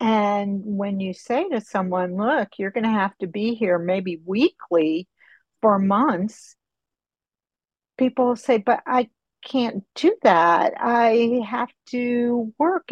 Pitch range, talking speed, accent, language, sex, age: 190-240 Hz, 135 wpm, American, English, female, 60-79